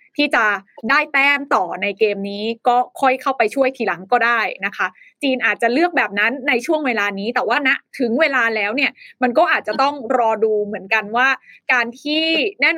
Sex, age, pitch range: female, 20-39, 220-290 Hz